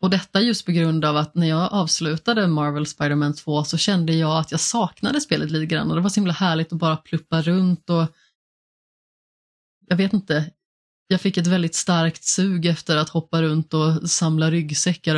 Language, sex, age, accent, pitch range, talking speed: Swedish, female, 30-49, native, 160-185 Hz, 195 wpm